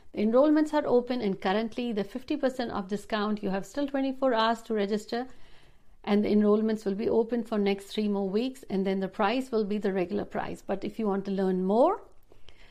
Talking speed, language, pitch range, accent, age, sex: 205 wpm, Hindi, 200-265 Hz, native, 60-79, female